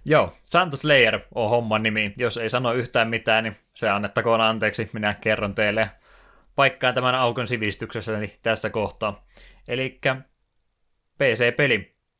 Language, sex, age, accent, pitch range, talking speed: Finnish, male, 20-39, native, 105-125 Hz, 130 wpm